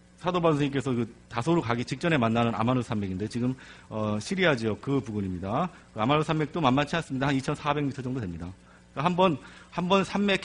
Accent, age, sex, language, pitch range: native, 40-59, male, Korean, 115-170 Hz